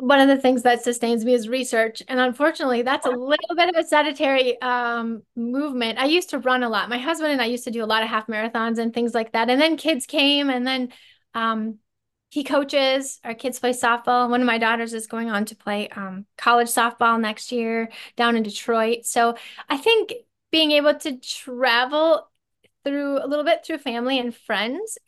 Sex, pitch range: female, 225-275 Hz